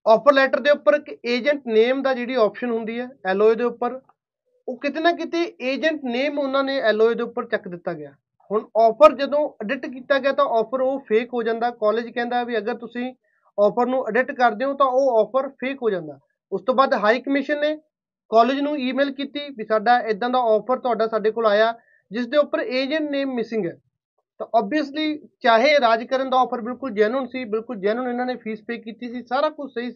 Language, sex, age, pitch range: Punjabi, male, 30-49, 225-270 Hz